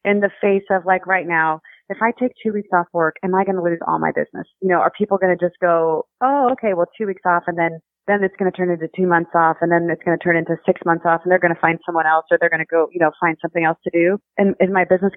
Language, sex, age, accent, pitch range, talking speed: English, female, 30-49, American, 170-200 Hz, 315 wpm